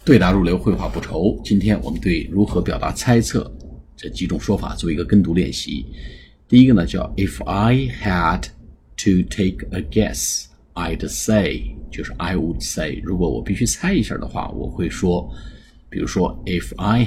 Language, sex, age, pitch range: Chinese, male, 50-69, 80-105 Hz